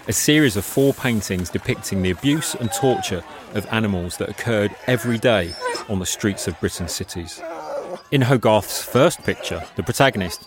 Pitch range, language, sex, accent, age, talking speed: 95-130 Hz, English, male, British, 30-49, 160 wpm